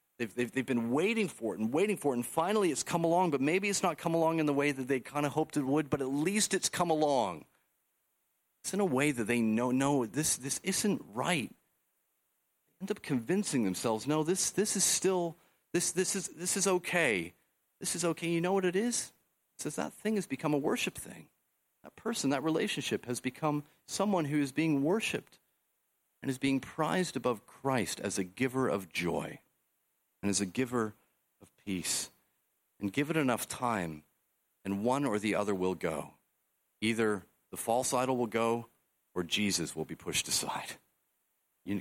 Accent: American